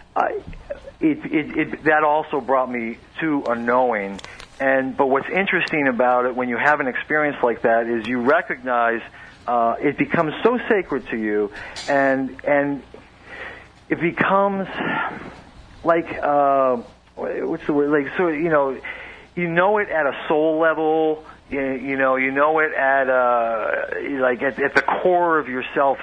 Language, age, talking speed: English, 40-59, 155 wpm